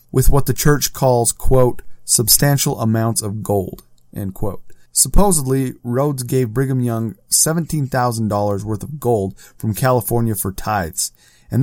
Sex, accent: male, American